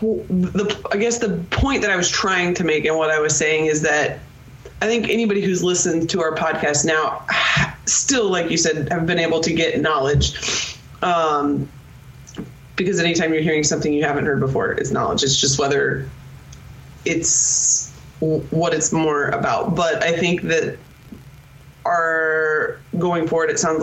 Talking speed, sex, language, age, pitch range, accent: 170 wpm, female, English, 20-39, 140-165 Hz, American